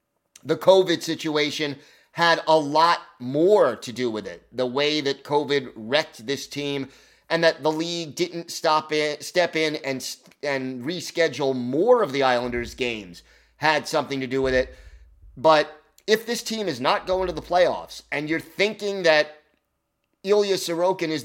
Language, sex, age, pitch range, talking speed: English, male, 30-49, 130-170 Hz, 165 wpm